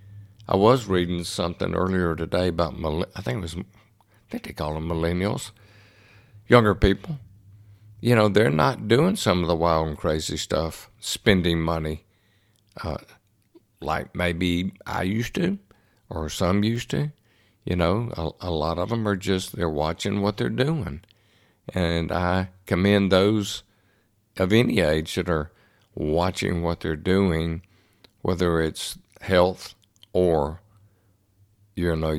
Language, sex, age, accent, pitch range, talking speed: English, male, 60-79, American, 85-105 Hz, 140 wpm